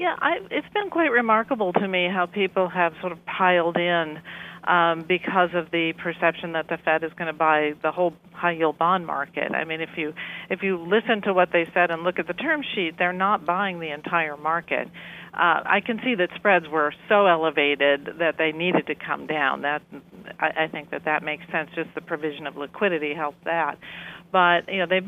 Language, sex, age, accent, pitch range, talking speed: English, female, 50-69, American, 160-185 Hz, 215 wpm